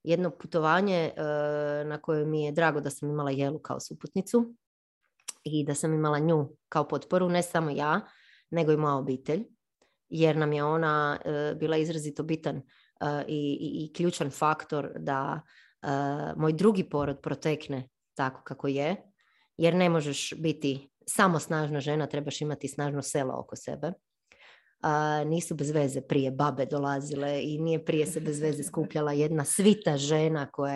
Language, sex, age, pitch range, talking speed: Croatian, female, 30-49, 145-160 Hz, 160 wpm